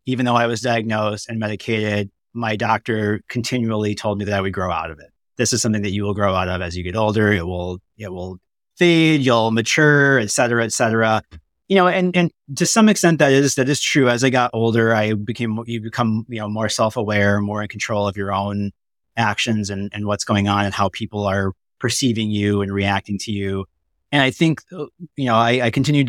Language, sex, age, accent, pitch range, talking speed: English, male, 30-49, American, 105-120 Hz, 225 wpm